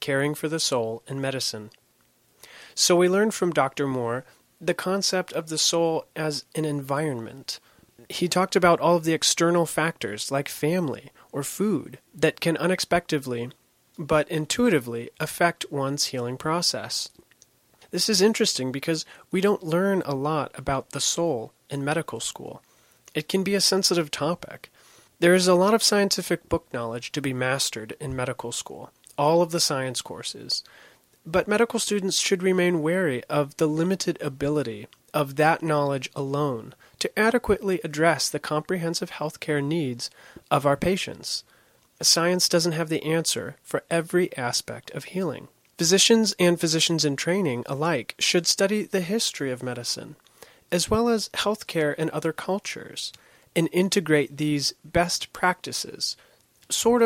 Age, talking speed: 30-49, 150 wpm